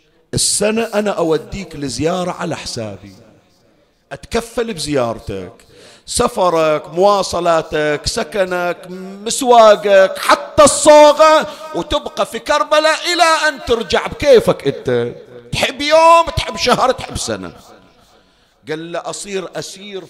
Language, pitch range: Arabic, 140-205 Hz